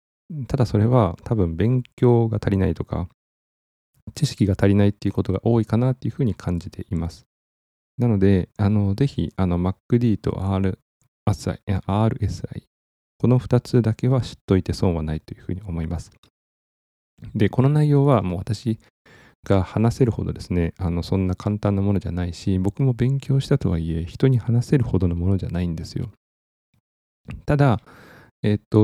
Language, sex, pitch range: Japanese, male, 90-120 Hz